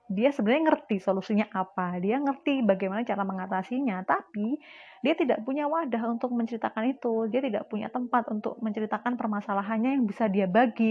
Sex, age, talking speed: female, 20-39, 160 wpm